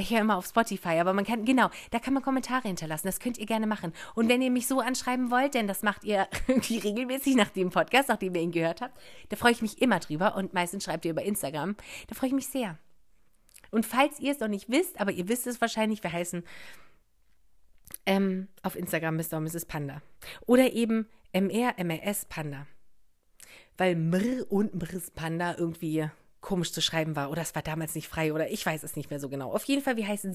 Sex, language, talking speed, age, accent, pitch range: female, German, 220 wpm, 30-49, German, 165-235 Hz